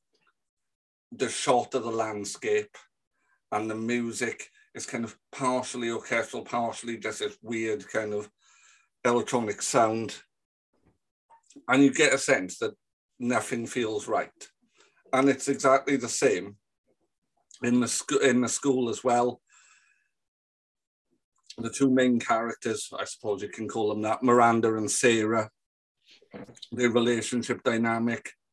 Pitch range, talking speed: 115-135 Hz, 125 wpm